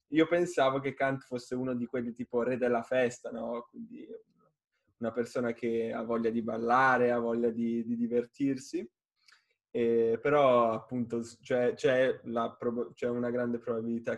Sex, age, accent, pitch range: male, 10-29, native, 120-155 Hz